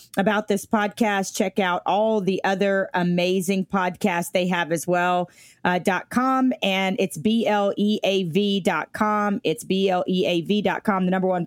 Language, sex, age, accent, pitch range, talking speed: English, female, 40-59, American, 185-245 Hz, 140 wpm